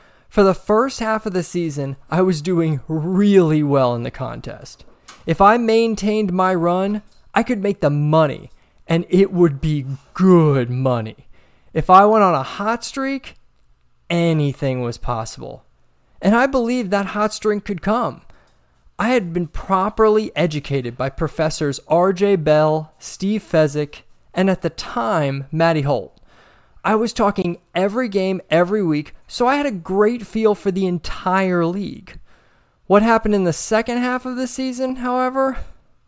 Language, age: English, 20-39